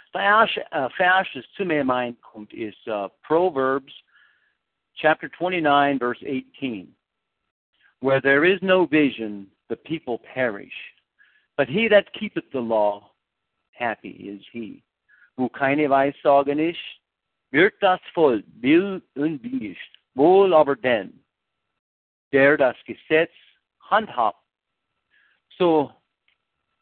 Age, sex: 60-79, male